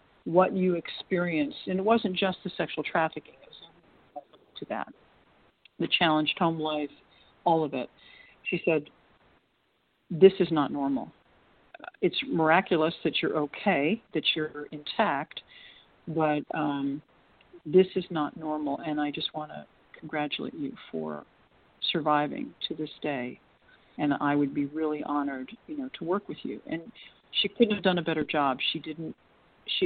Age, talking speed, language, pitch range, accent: 50-69, 155 wpm, English, 150-190 Hz, American